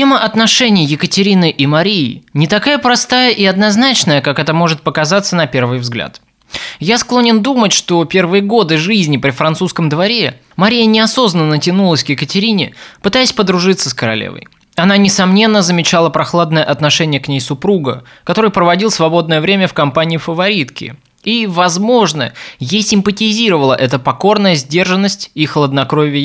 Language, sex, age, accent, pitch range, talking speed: Russian, male, 20-39, native, 145-200 Hz, 135 wpm